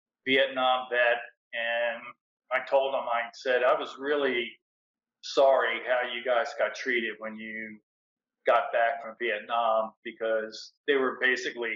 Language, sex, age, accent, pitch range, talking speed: English, male, 40-59, American, 115-130 Hz, 140 wpm